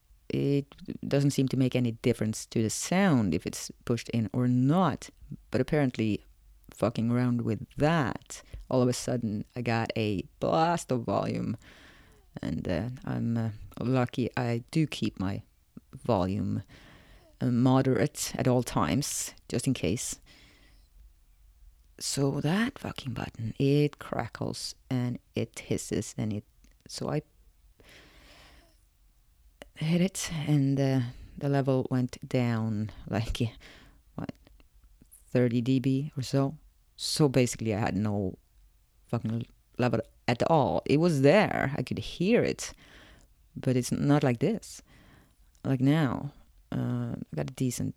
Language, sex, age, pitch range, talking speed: English, female, 30-49, 100-135 Hz, 130 wpm